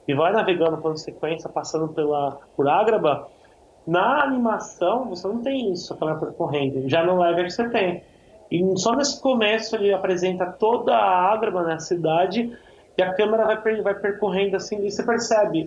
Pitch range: 155-200 Hz